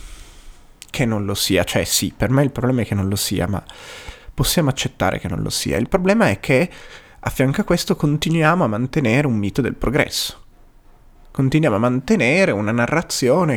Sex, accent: male, native